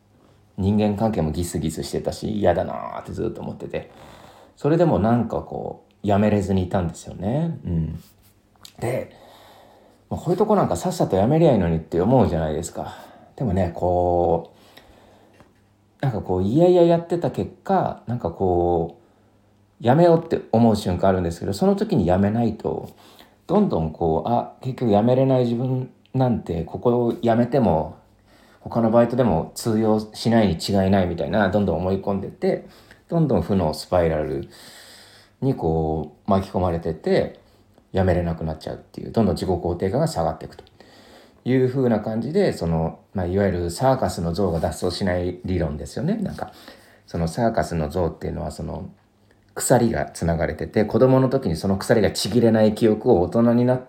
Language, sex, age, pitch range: Japanese, male, 40-59, 85-120 Hz